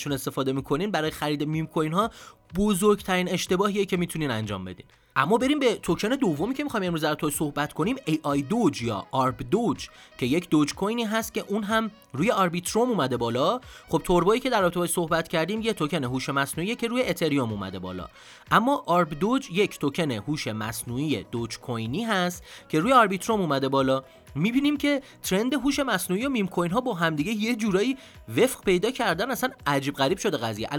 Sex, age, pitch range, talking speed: male, 30-49, 145-215 Hz, 185 wpm